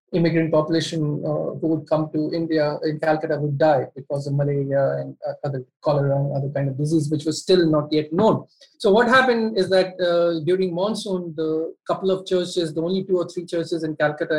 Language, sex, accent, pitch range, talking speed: English, male, Indian, 155-185 Hz, 205 wpm